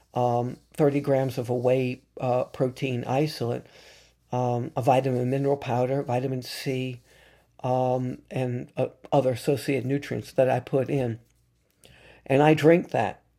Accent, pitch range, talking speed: American, 125-150 Hz, 135 wpm